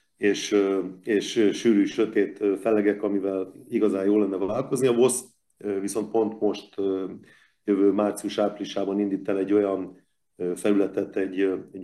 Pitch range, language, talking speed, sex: 95-105 Hz, Hungarian, 115 wpm, male